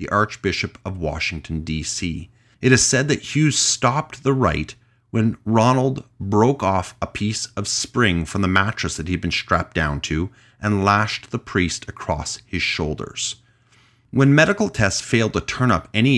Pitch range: 95-125 Hz